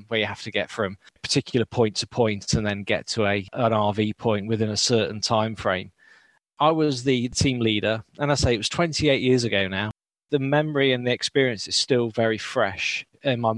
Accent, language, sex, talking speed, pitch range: British, English, male, 210 wpm, 105-130 Hz